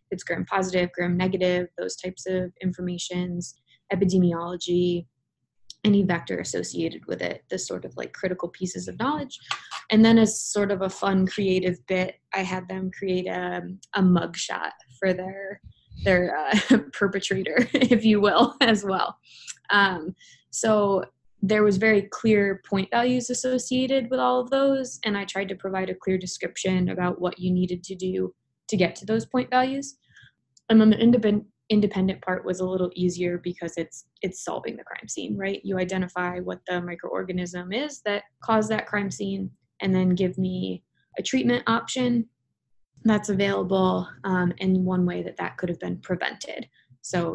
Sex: female